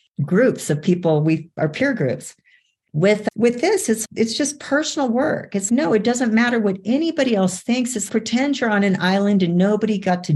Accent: American